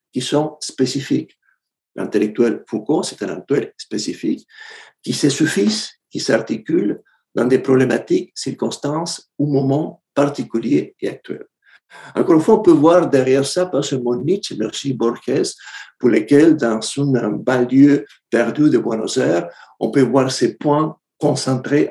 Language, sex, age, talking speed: French, male, 60-79, 140 wpm